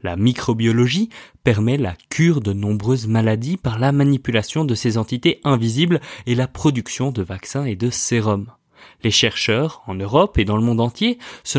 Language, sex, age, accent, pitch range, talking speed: French, male, 20-39, French, 105-140 Hz, 170 wpm